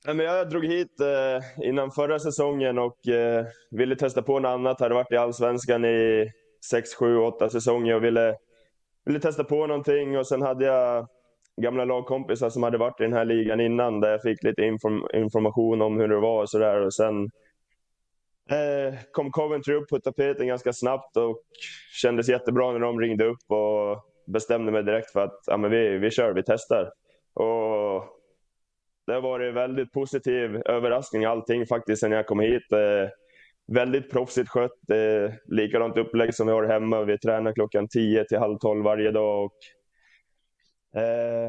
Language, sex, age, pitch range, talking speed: Swedish, male, 10-29, 110-130 Hz, 170 wpm